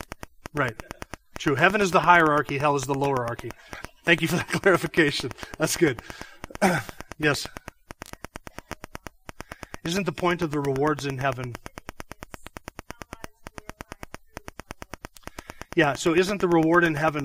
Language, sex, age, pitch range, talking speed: English, male, 30-49, 135-160 Hz, 120 wpm